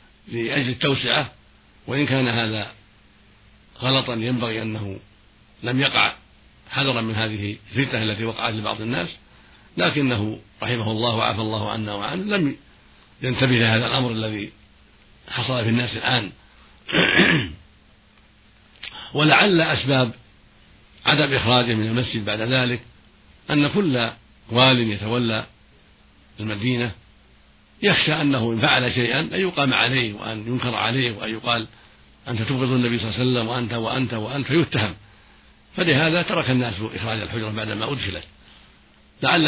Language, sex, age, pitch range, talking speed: Arabic, male, 60-79, 110-130 Hz, 120 wpm